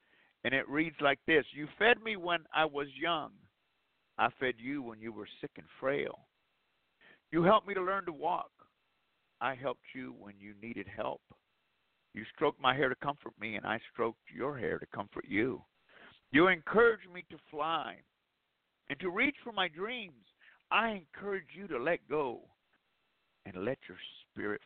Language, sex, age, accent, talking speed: English, male, 50-69, American, 175 wpm